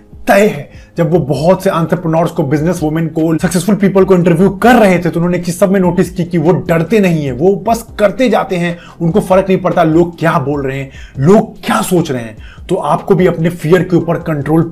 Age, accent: 30-49, native